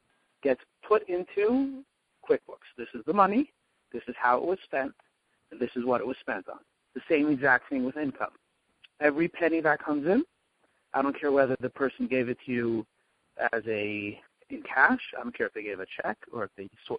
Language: English